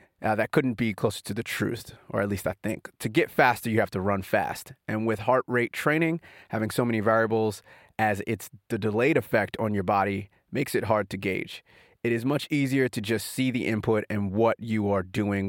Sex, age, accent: male, 30-49, American